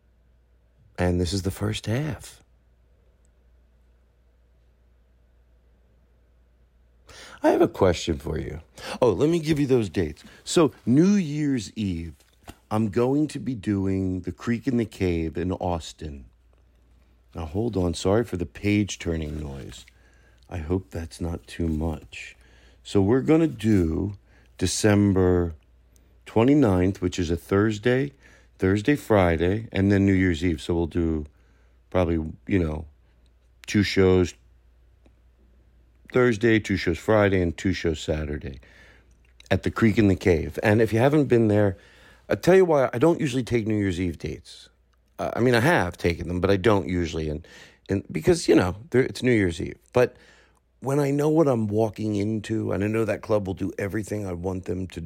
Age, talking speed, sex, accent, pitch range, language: 50-69, 160 wpm, male, American, 75-105 Hz, English